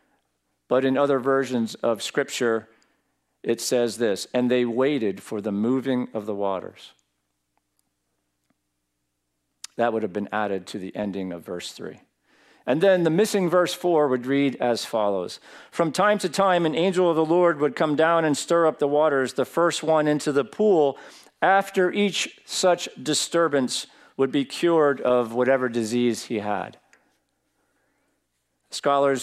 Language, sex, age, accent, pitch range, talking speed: English, male, 50-69, American, 110-150 Hz, 155 wpm